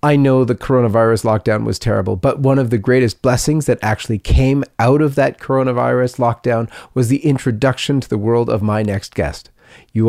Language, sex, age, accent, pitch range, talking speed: English, male, 30-49, American, 115-145 Hz, 190 wpm